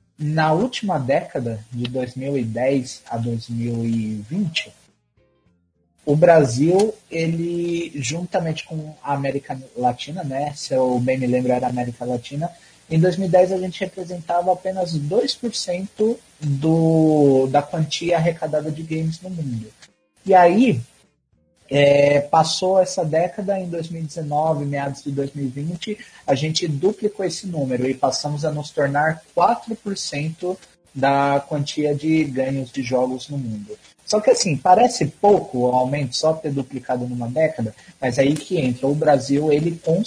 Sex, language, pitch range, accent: male, Portuguese, 130-170 Hz, Brazilian